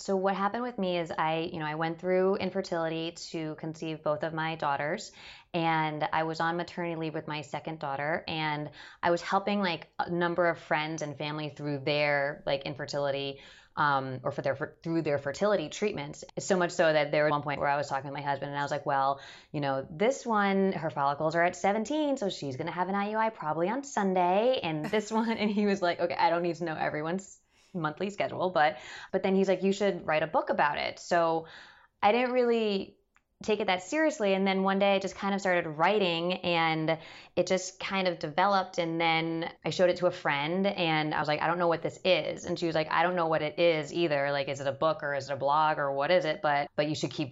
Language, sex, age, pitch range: English, female, 20-39, 150-185 Hz